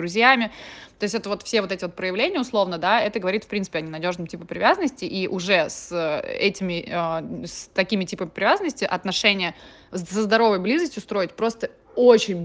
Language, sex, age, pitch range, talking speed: Russian, female, 20-39, 180-220 Hz, 170 wpm